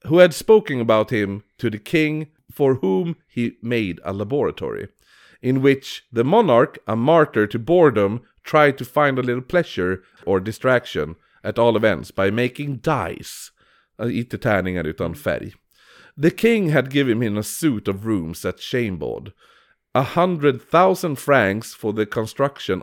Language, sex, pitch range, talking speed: Swedish, male, 105-145 Hz, 140 wpm